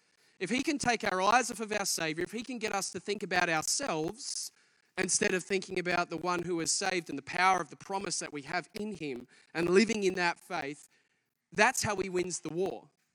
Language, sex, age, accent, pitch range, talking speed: English, male, 20-39, Australian, 155-210 Hz, 230 wpm